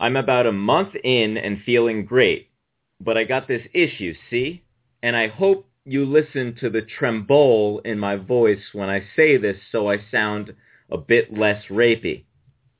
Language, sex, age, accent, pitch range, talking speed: English, male, 30-49, American, 105-140 Hz, 170 wpm